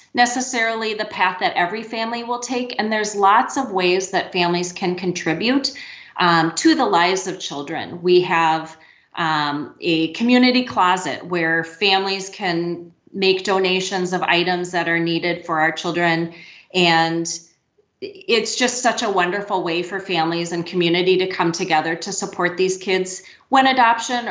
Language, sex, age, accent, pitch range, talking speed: English, female, 30-49, American, 175-205 Hz, 155 wpm